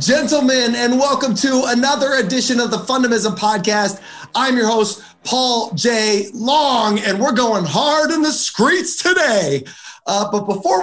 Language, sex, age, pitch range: English, male, 30-49, 180-255 Hz